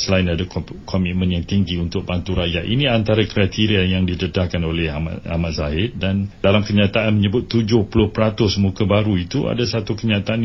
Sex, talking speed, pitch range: male, 155 wpm, 90-115 Hz